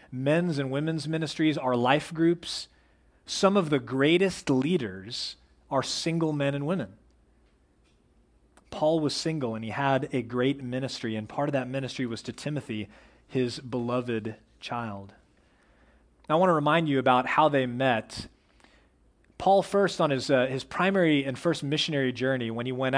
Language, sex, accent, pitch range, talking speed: English, male, American, 120-160 Hz, 155 wpm